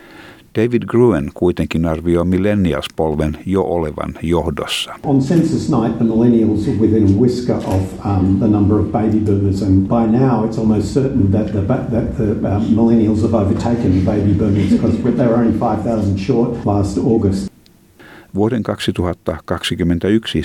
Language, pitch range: Finnish, 80-110 Hz